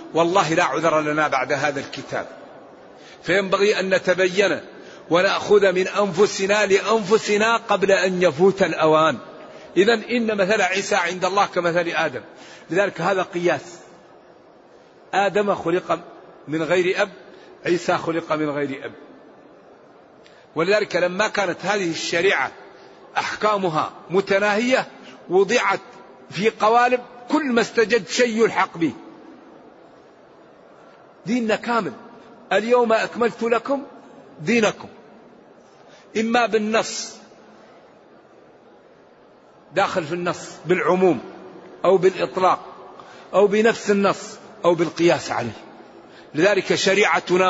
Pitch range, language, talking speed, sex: 175-220 Hz, Arabic, 95 wpm, male